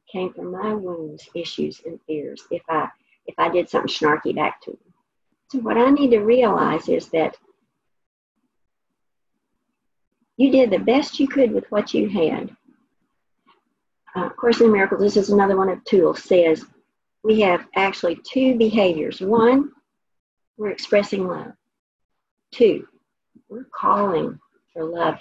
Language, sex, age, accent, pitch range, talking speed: English, female, 50-69, American, 195-260 Hz, 145 wpm